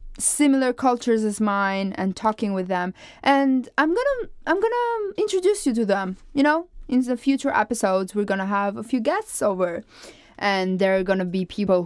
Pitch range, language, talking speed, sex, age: 180-255 Hz, English, 175 wpm, female, 20-39